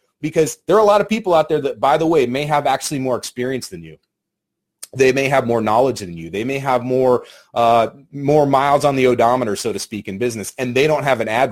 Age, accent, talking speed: 30-49, American, 250 wpm